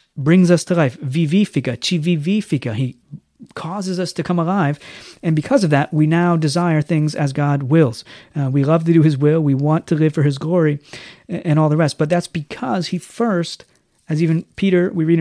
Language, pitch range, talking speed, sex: English, 155-185 Hz, 205 wpm, male